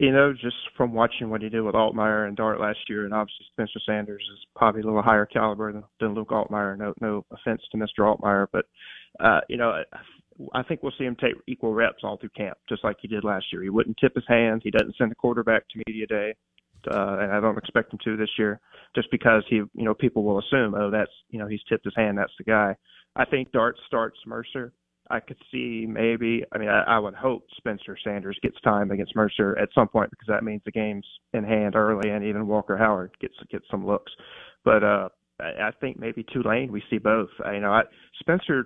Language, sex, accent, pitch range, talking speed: English, male, American, 105-115 Hz, 230 wpm